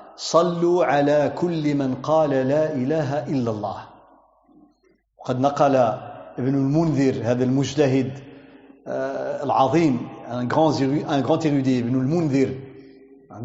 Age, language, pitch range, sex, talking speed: 50-69, French, 140-175 Hz, male, 100 wpm